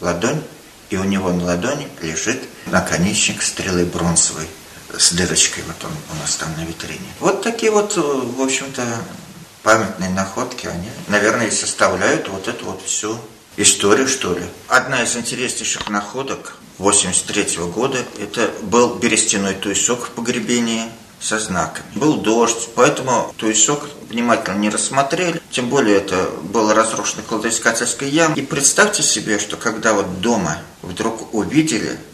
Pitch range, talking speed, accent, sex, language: 95-120 Hz, 140 wpm, native, male, Russian